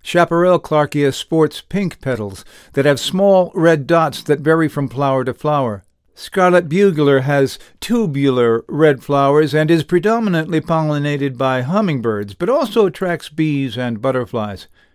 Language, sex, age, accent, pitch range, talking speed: English, male, 60-79, American, 130-170 Hz, 135 wpm